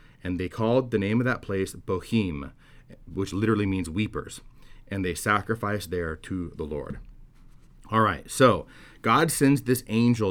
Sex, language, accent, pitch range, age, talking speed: male, English, American, 95-120 Hz, 30-49, 155 wpm